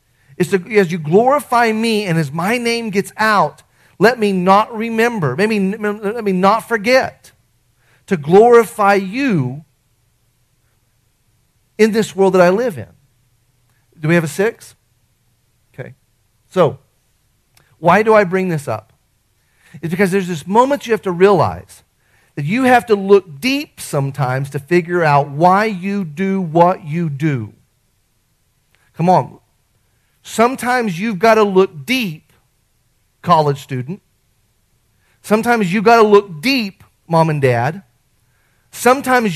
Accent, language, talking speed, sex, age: American, English, 135 wpm, male, 40-59